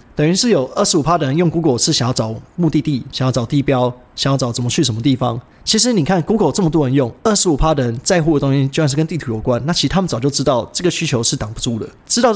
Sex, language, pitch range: male, Chinese, 125-165 Hz